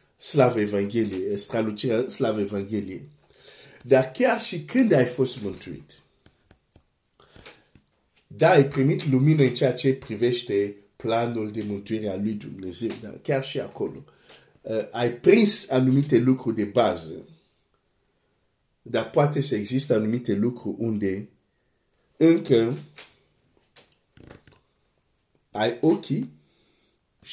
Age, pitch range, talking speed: 50-69, 115-150 Hz, 105 wpm